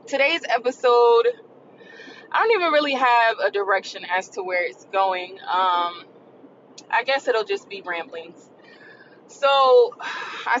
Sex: female